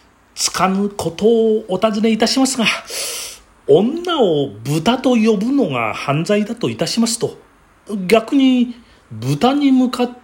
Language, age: Japanese, 40-59